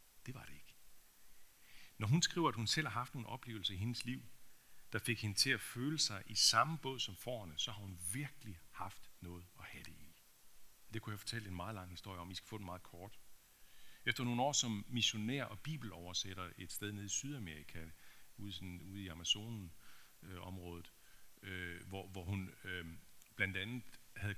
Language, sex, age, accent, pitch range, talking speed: Danish, male, 50-69, native, 95-120 Hz, 195 wpm